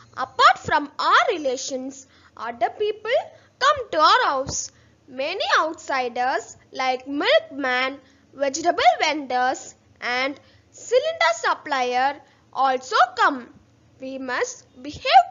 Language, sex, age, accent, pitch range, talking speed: Tamil, female, 20-39, native, 245-335 Hz, 95 wpm